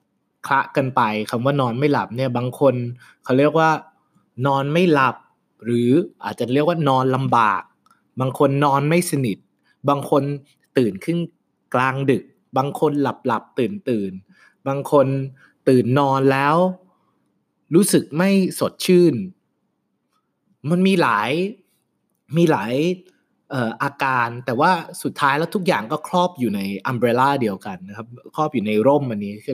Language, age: Thai, 20-39